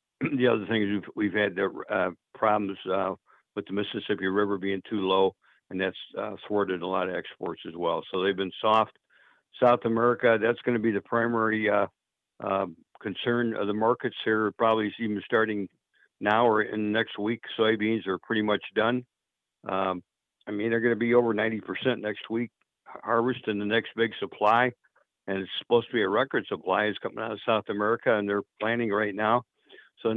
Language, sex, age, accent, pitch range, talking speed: English, male, 60-79, American, 100-115 Hz, 195 wpm